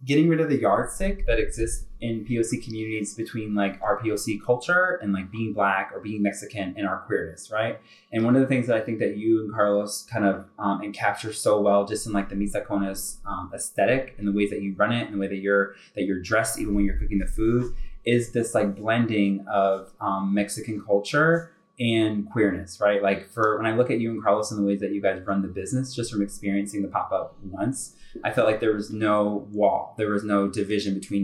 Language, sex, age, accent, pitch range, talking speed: English, male, 20-39, American, 100-110 Hz, 230 wpm